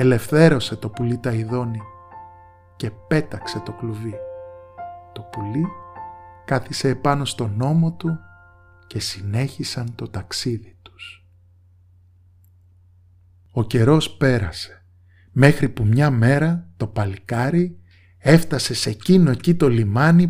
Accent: native